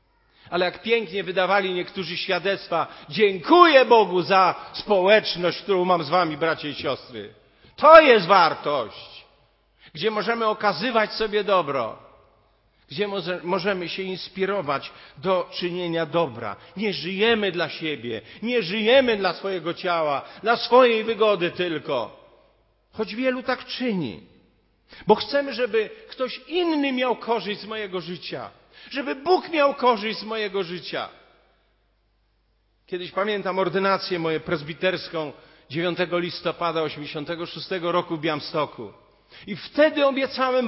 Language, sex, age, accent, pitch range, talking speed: Polish, male, 50-69, native, 170-230 Hz, 120 wpm